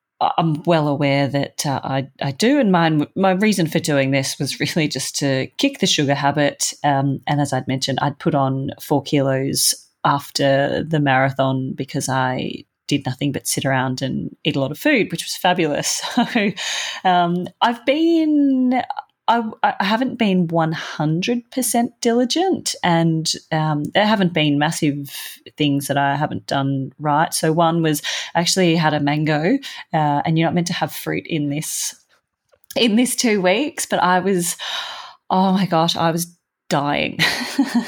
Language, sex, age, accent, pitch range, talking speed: English, female, 30-49, Australian, 145-190 Hz, 165 wpm